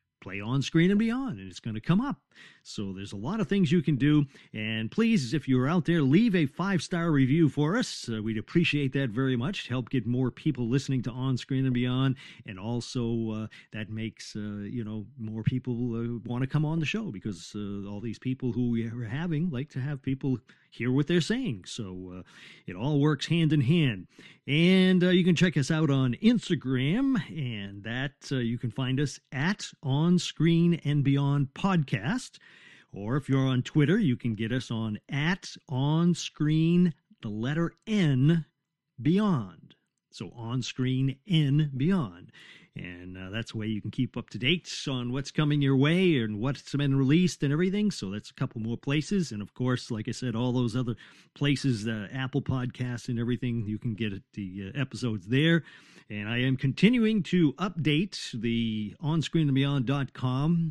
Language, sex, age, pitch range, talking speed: English, male, 50-69, 120-160 Hz, 190 wpm